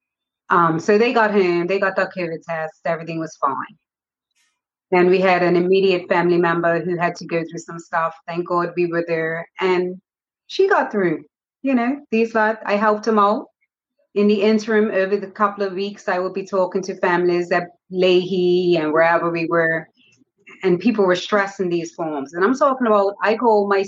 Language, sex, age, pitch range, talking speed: English, female, 30-49, 175-220 Hz, 195 wpm